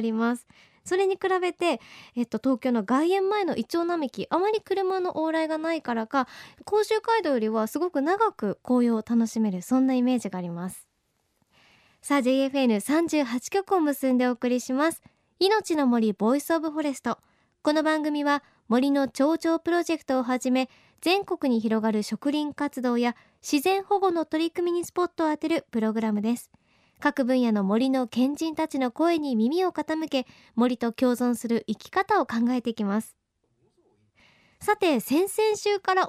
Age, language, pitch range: 20-39, Japanese, 240-345 Hz